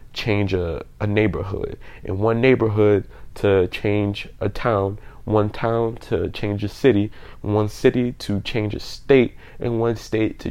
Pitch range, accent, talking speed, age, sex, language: 100-120 Hz, American, 155 wpm, 20-39, male, English